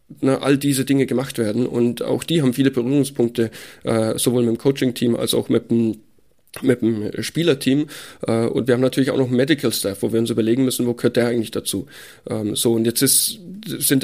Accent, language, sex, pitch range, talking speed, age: German, German, male, 120-140 Hz, 205 wpm, 10-29